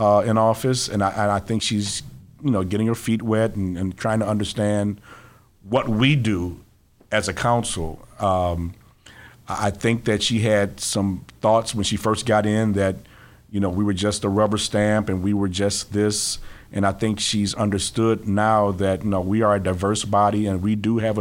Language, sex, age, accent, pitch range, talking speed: English, male, 50-69, American, 100-115 Hz, 200 wpm